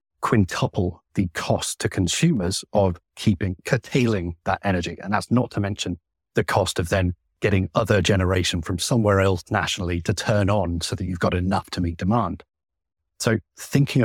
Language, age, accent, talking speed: English, 40-59, British, 165 wpm